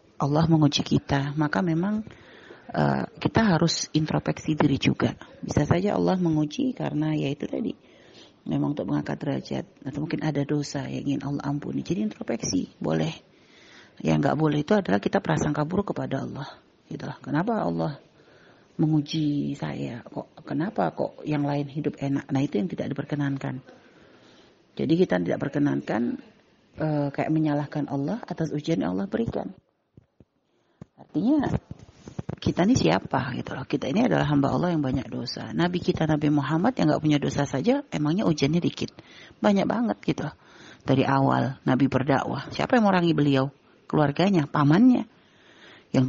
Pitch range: 135-165 Hz